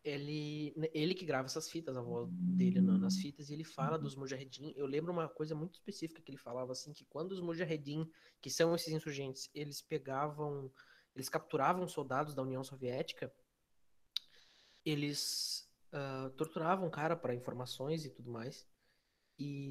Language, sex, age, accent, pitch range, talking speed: Portuguese, male, 20-39, Brazilian, 135-155 Hz, 160 wpm